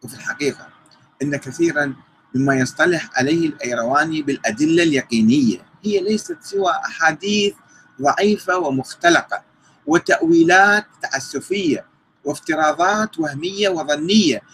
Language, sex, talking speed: Arabic, male, 85 wpm